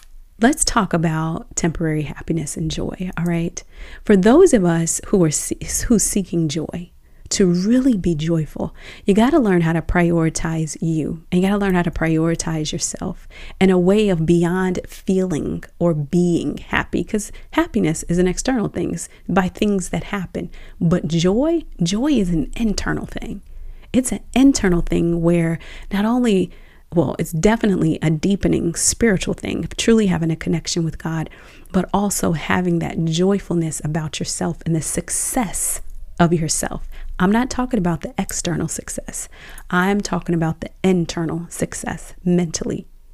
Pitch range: 165-200 Hz